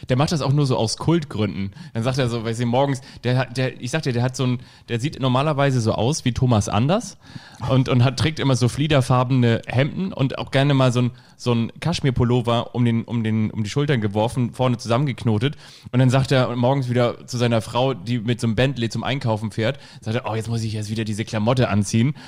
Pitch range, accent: 115-135 Hz, German